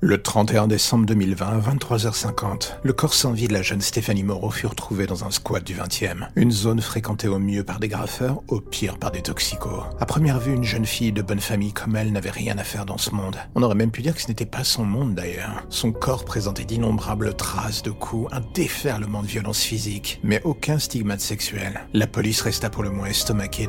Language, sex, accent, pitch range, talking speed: French, male, French, 100-115 Hz, 225 wpm